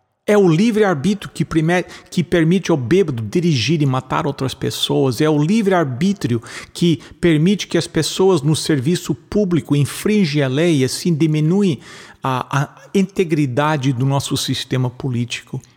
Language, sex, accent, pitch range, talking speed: English, male, Brazilian, 135-180 Hz, 140 wpm